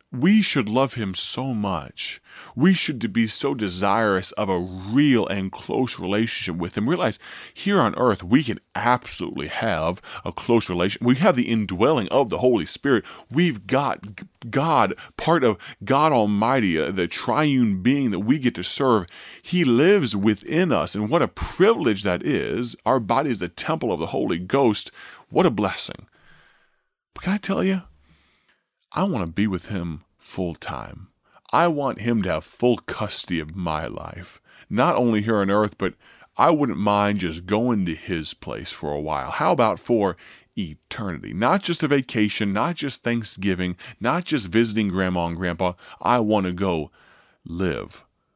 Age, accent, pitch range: 30-49, American, 95-130 Hz